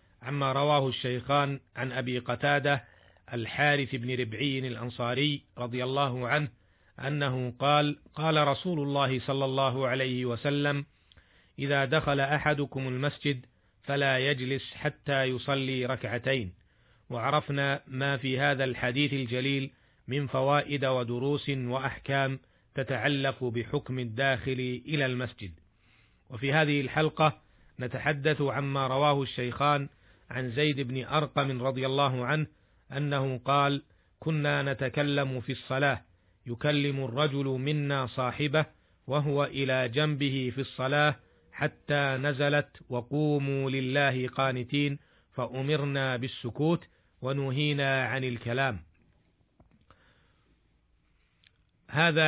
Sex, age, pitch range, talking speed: male, 40-59, 125-145 Hz, 100 wpm